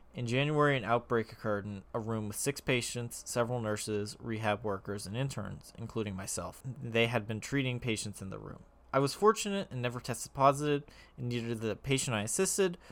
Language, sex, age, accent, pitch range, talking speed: English, male, 20-39, American, 105-130 Hz, 190 wpm